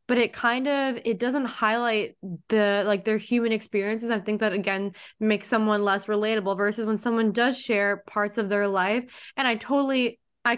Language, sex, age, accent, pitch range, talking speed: English, female, 20-39, American, 210-240 Hz, 185 wpm